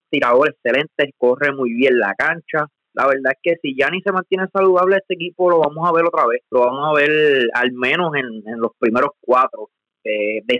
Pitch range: 125-170 Hz